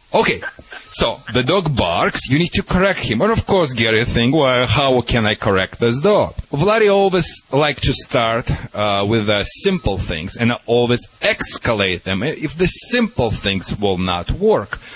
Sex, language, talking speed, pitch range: male, English, 175 wpm, 115-165 Hz